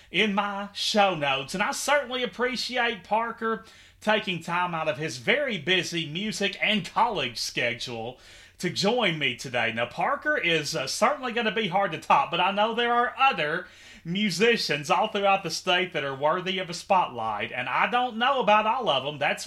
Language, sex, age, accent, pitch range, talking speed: English, male, 30-49, American, 150-215 Hz, 190 wpm